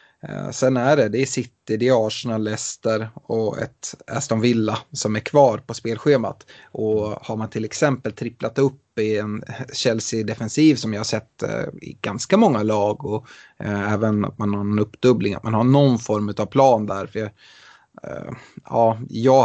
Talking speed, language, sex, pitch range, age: 165 wpm, Swedish, male, 105-130 Hz, 30-49